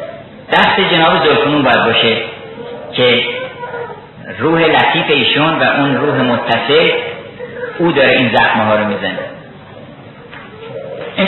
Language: Persian